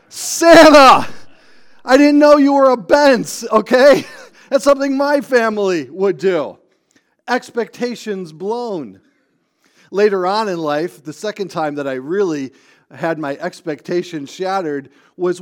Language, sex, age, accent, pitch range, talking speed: English, male, 40-59, American, 170-235 Hz, 125 wpm